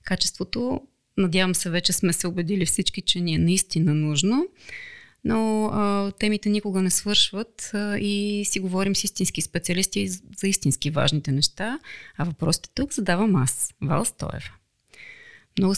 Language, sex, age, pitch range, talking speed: Bulgarian, female, 30-49, 175-200 Hz, 140 wpm